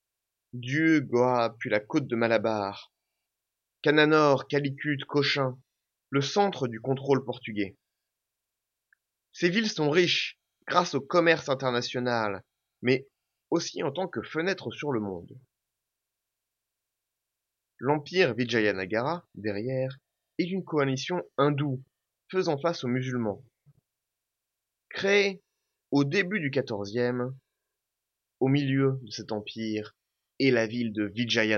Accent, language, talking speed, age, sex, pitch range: French, French, 110 wpm, 30-49, male, 120-150 Hz